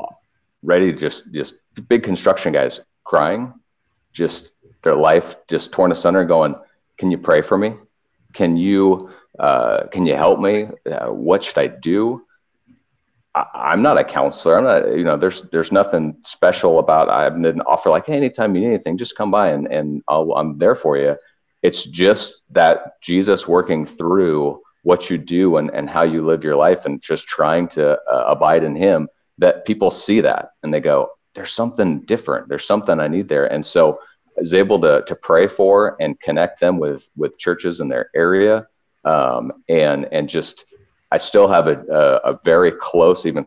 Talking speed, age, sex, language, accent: 190 wpm, 40-59, male, English, American